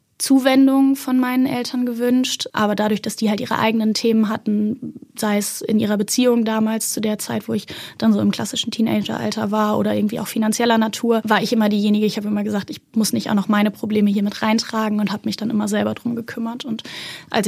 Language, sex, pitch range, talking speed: German, female, 215-230 Hz, 220 wpm